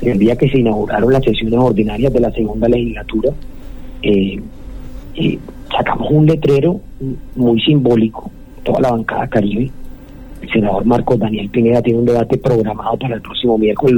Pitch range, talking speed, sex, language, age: 115-135 Hz, 155 wpm, male, Spanish, 40-59